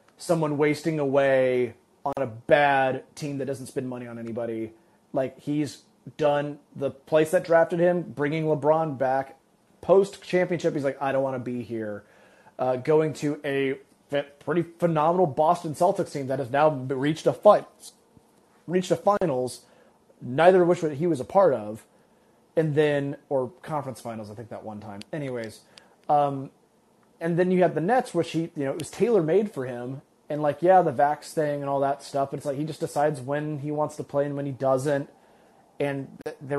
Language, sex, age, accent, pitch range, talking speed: English, male, 30-49, American, 135-175 Hz, 190 wpm